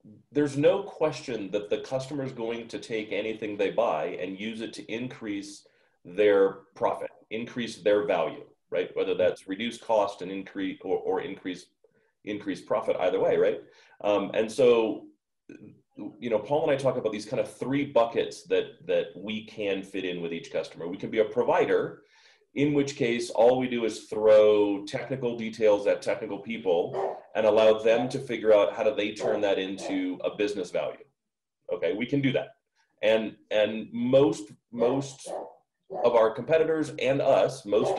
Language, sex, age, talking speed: English, male, 30-49, 175 wpm